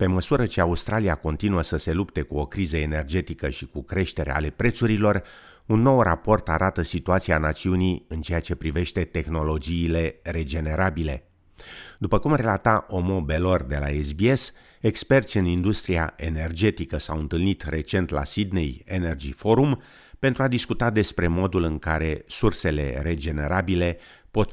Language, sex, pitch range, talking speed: Romanian, male, 80-100 Hz, 140 wpm